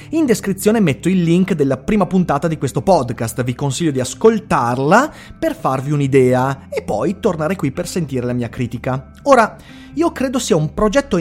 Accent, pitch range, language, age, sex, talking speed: native, 130-205 Hz, Italian, 30-49, male, 175 wpm